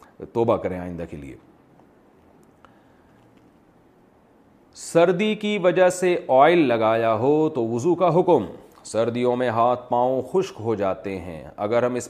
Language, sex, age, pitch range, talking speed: Urdu, male, 40-59, 125-175 Hz, 135 wpm